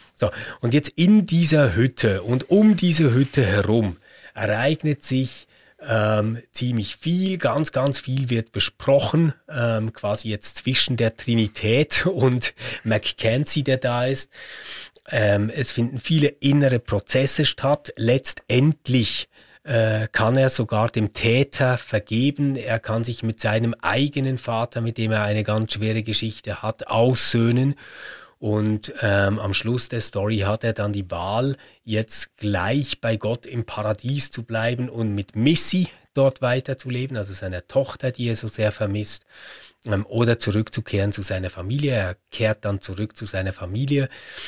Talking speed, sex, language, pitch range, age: 145 wpm, male, German, 105-130 Hz, 30-49